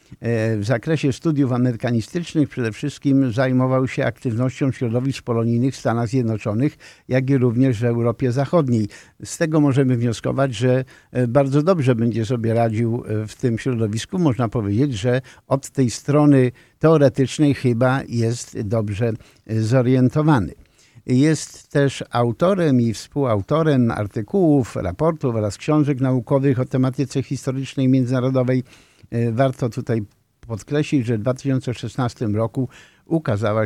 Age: 50-69